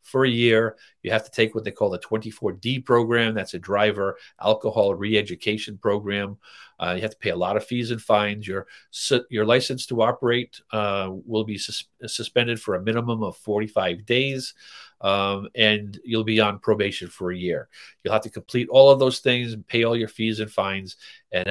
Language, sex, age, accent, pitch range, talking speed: English, male, 50-69, American, 100-120 Hz, 200 wpm